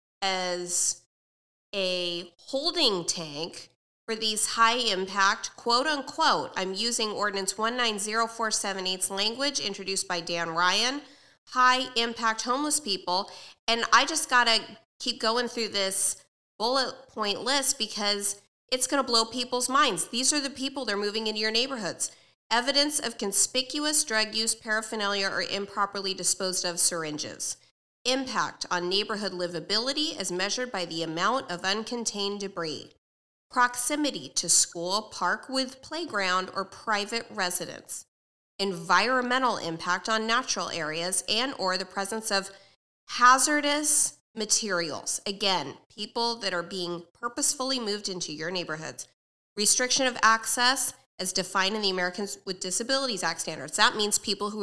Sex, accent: female, American